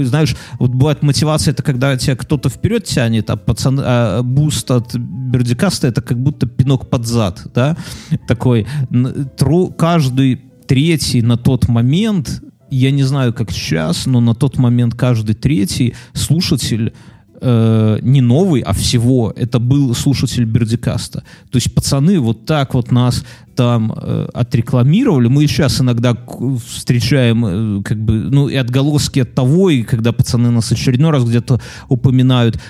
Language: Russian